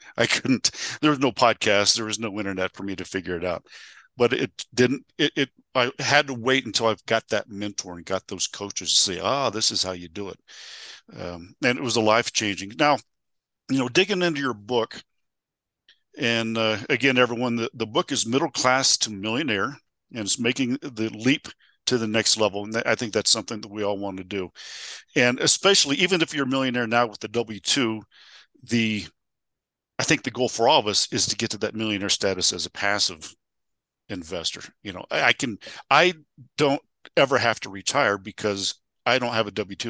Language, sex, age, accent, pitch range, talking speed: English, male, 50-69, American, 100-130 Hz, 205 wpm